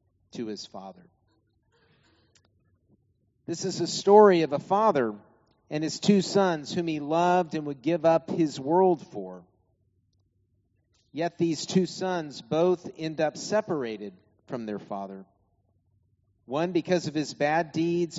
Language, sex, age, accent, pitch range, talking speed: English, male, 50-69, American, 105-165 Hz, 135 wpm